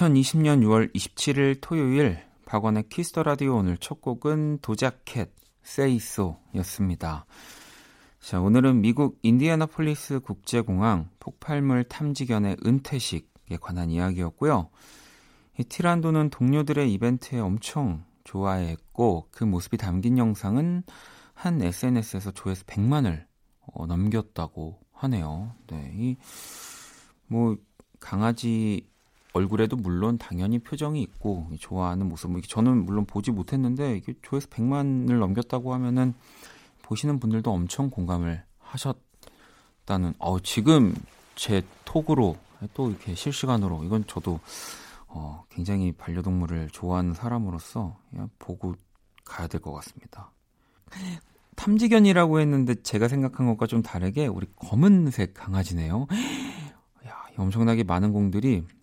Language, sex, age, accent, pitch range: Korean, male, 40-59, native, 90-135 Hz